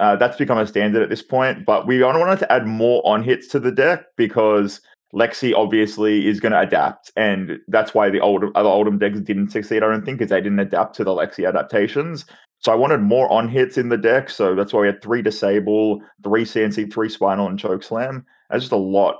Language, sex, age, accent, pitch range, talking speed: English, male, 20-39, Australian, 105-125 Hz, 225 wpm